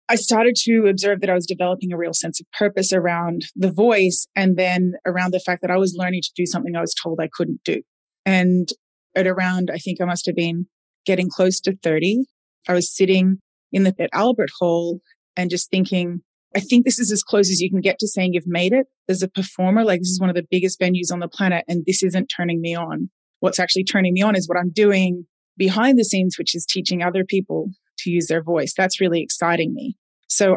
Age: 30-49